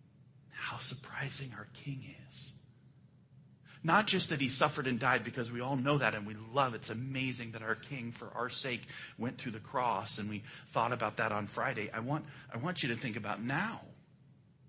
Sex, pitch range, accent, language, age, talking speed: male, 125-140 Hz, American, English, 40-59, 200 wpm